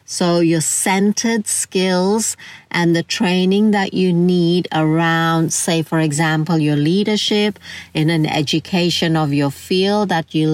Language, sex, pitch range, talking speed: English, female, 155-185 Hz, 135 wpm